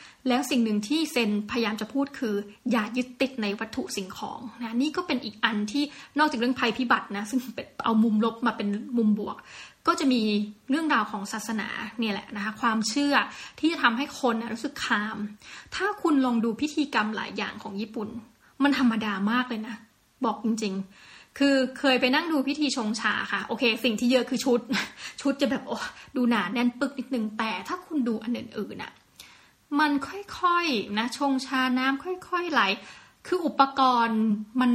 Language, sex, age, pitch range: Thai, female, 20-39, 220-275 Hz